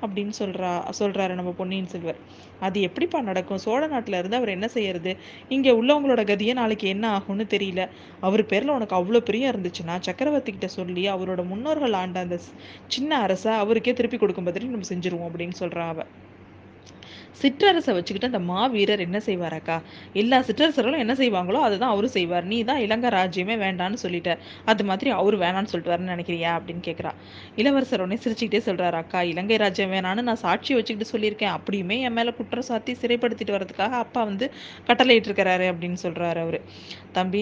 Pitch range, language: 185-235 Hz, Tamil